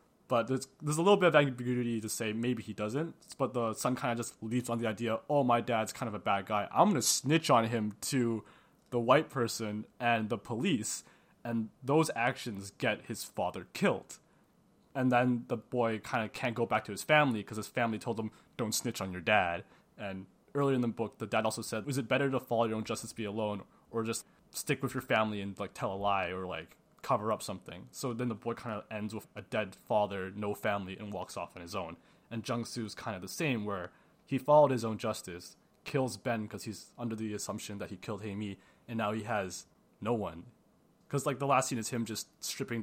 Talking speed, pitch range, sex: 235 wpm, 105-120 Hz, male